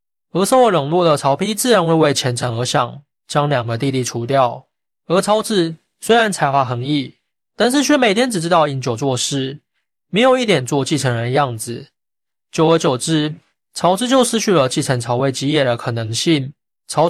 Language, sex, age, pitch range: Chinese, male, 20-39, 130-180 Hz